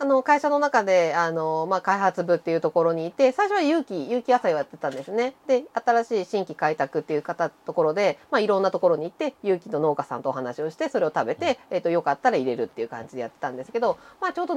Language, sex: Japanese, female